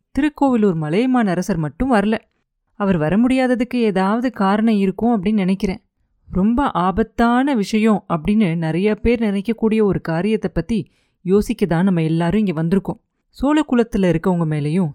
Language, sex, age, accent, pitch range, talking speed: Tamil, female, 30-49, native, 175-230 Hz, 135 wpm